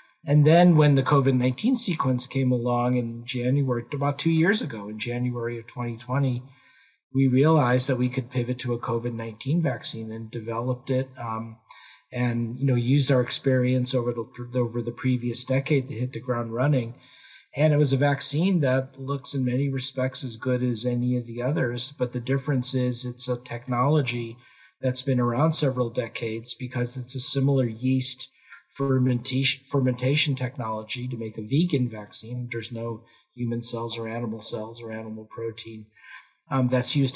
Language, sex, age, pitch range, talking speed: English, male, 50-69, 120-135 Hz, 170 wpm